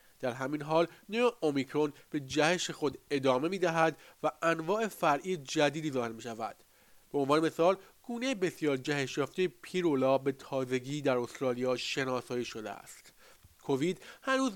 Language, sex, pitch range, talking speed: Persian, male, 130-170 Hz, 145 wpm